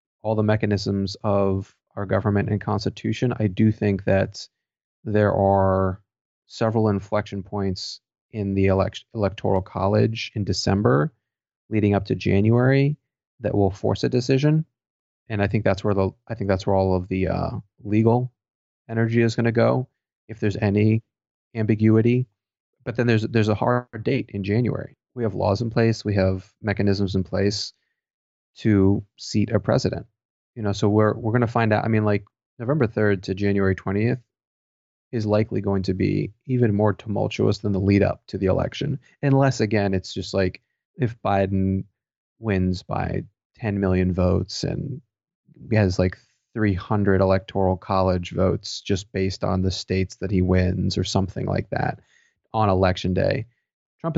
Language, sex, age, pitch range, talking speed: English, male, 30-49, 95-115 Hz, 165 wpm